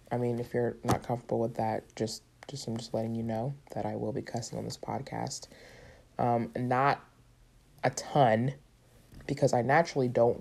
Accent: American